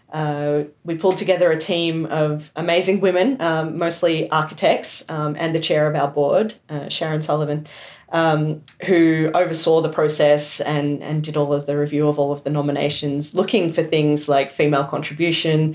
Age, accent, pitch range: 40-59, Australian, 145-165 Hz